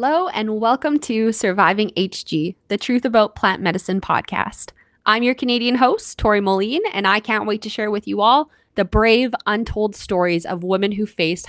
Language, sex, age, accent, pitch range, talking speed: English, female, 20-39, American, 180-230 Hz, 185 wpm